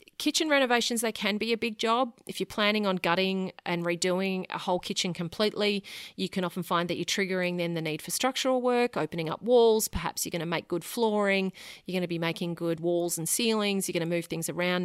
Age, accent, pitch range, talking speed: 30-49, Australian, 170-205 Hz, 230 wpm